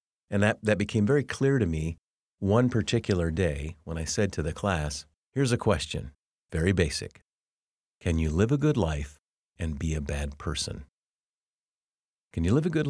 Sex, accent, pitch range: male, American, 90-130 Hz